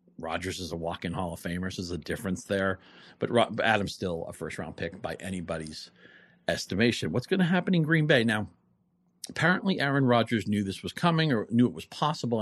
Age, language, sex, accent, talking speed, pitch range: 40-59, English, male, American, 200 wpm, 90-120 Hz